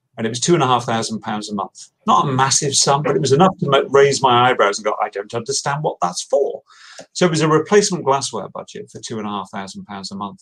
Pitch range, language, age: 110-175 Hz, English, 40-59